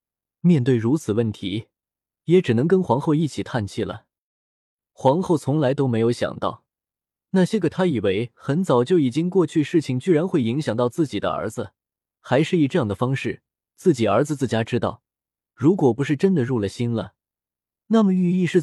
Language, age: Chinese, 20-39